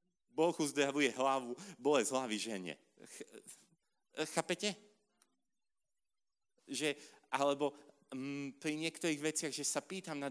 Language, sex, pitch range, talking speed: Slovak, male, 130-160 Hz, 110 wpm